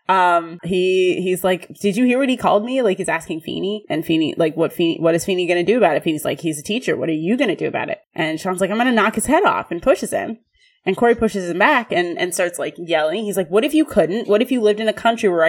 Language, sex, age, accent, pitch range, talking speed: English, female, 20-39, American, 165-215 Hz, 285 wpm